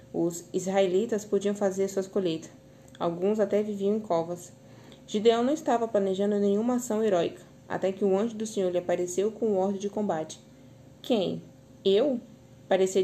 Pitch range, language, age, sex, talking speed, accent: 180-210 Hz, Portuguese, 20-39, female, 160 wpm, Brazilian